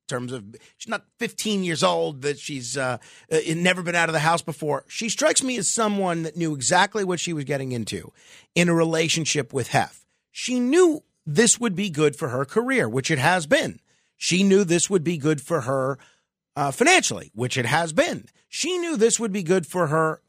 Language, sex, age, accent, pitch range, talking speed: English, male, 50-69, American, 150-220 Hz, 205 wpm